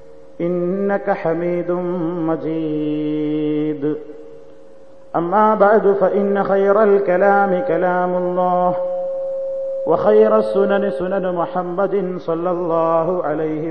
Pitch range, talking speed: 155-195 Hz, 75 wpm